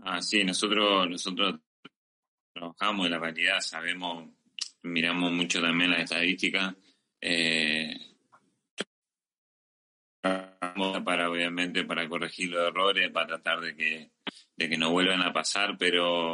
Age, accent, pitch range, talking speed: 30-49, Argentinian, 85-95 Hz, 120 wpm